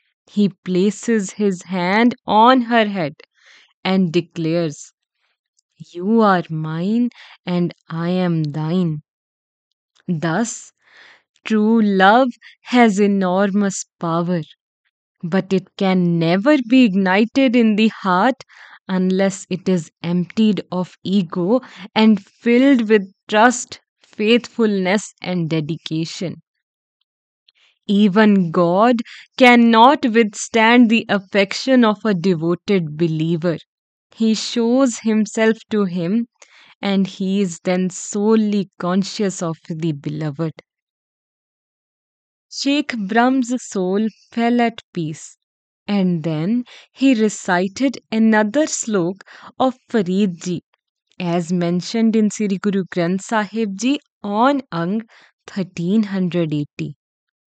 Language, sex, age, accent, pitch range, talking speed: English, female, 20-39, Indian, 175-225 Hz, 95 wpm